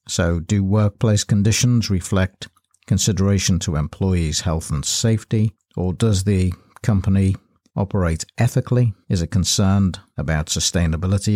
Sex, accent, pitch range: male, British, 90-110 Hz